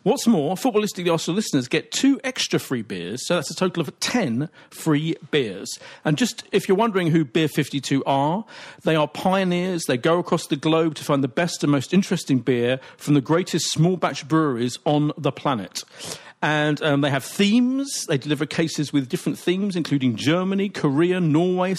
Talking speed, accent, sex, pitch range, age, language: 185 wpm, British, male, 135-180 Hz, 40-59, English